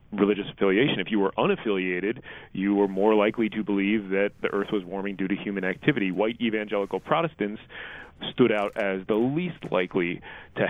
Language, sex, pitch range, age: English, male, 100-115 Hz, 30-49